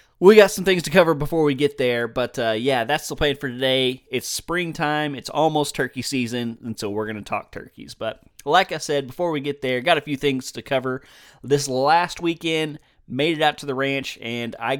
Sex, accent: male, American